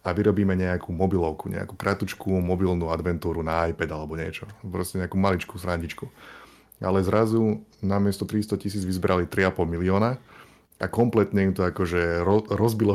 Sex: male